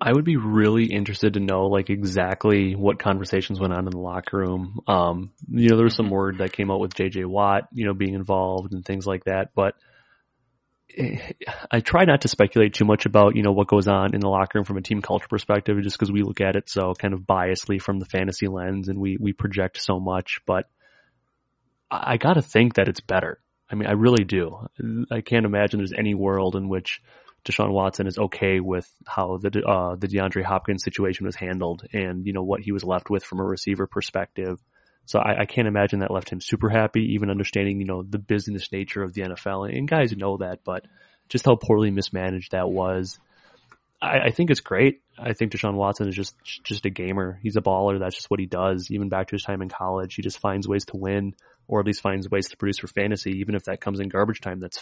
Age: 30-49